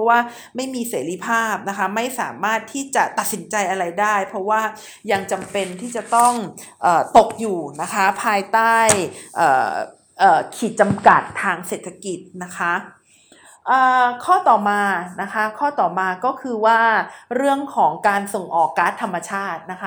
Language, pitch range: Thai, 190-240 Hz